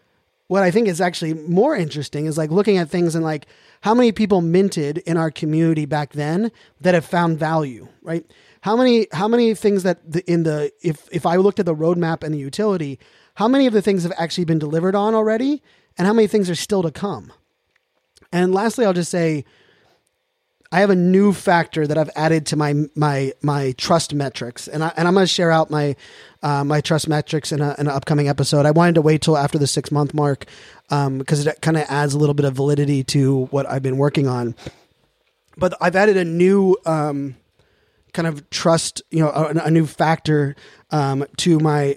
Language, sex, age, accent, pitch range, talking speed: English, male, 30-49, American, 150-185 Hz, 210 wpm